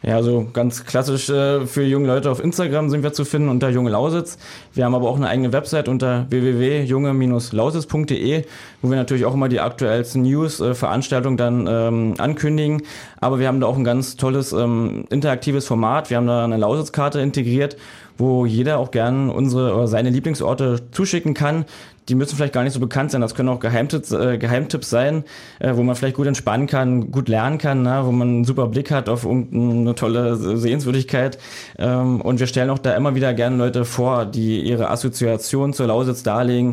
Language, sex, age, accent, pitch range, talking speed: German, male, 20-39, German, 120-135 Hz, 190 wpm